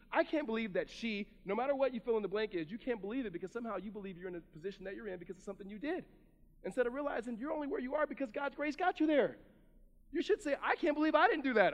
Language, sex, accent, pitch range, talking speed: English, male, American, 195-275 Hz, 295 wpm